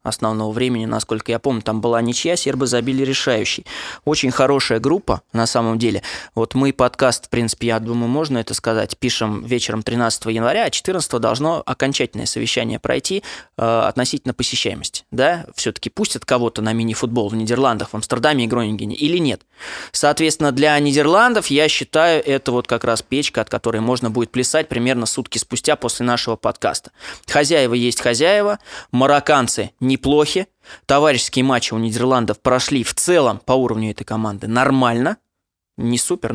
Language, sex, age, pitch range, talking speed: Russian, male, 20-39, 115-140 Hz, 155 wpm